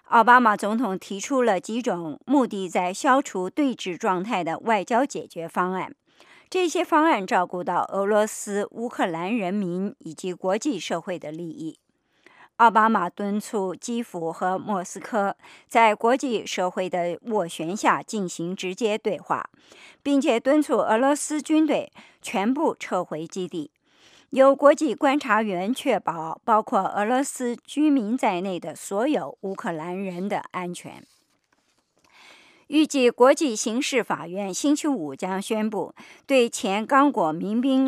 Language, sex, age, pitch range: English, male, 50-69, 185-260 Hz